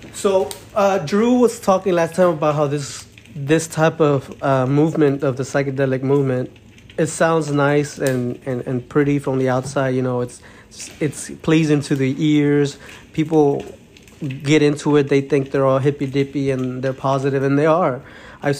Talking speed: 175 wpm